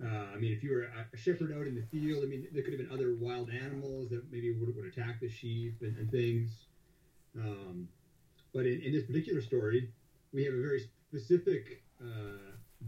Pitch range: 110-135 Hz